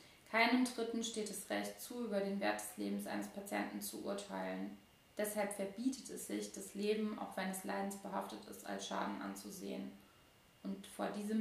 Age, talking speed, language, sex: 20-39, 170 wpm, German, female